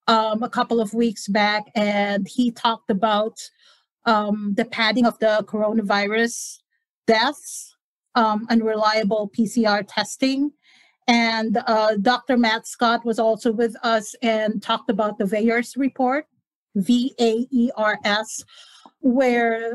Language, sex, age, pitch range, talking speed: English, female, 40-59, 215-255 Hz, 120 wpm